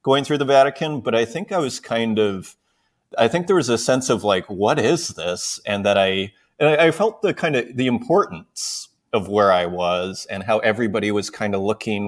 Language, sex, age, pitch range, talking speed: English, male, 30-49, 100-125 Hz, 220 wpm